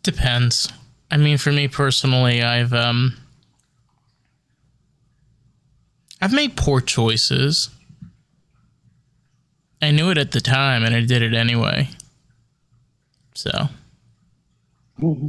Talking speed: 95 wpm